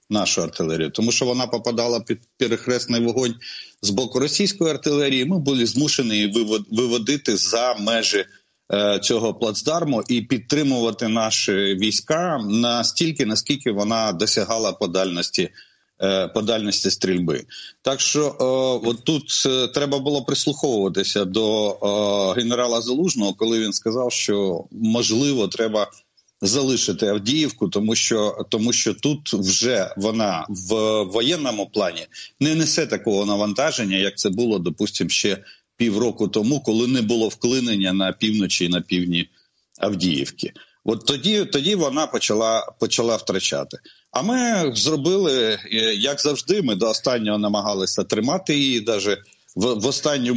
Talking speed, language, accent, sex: 125 wpm, Russian, native, male